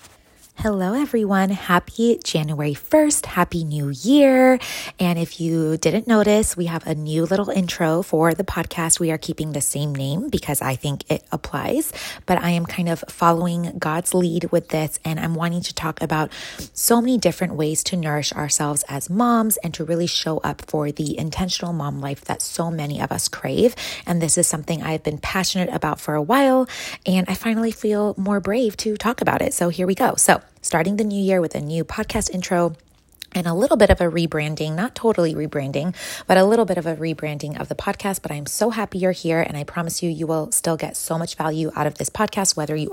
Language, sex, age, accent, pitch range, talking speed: English, female, 20-39, American, 160-195 Hz, 210 wpm